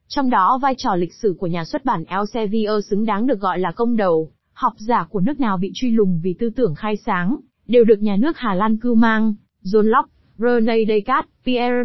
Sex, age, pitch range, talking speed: female, 20-39, 200-250 Hz, 225 wpm